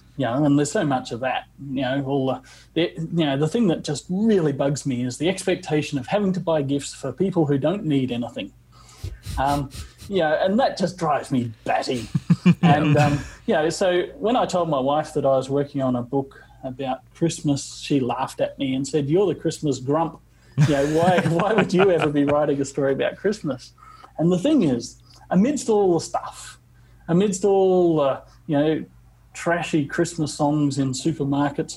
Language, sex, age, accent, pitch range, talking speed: English, male, 30-49, Australian, 135-170 Hz, 200 wpm